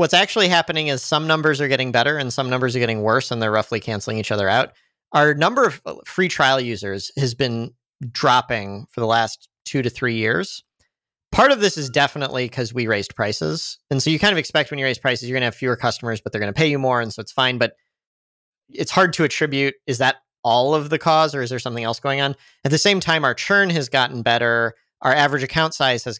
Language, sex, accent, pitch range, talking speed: English, male, American, 120-150 Hz, 245 wpm